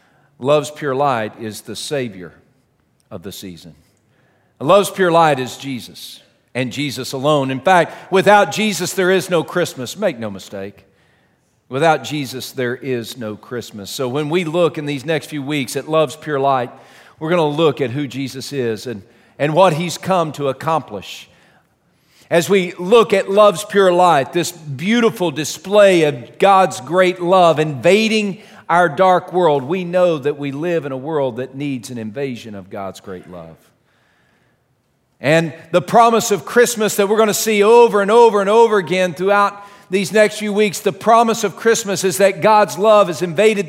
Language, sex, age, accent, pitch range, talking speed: English, male, 50-69, American, 130-190 Hz, 175 wpm